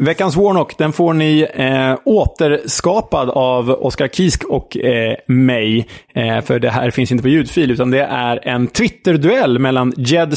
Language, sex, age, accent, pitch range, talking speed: Swedish, male, 20-39, Norwegian, 115-145 Hz, 160 wpm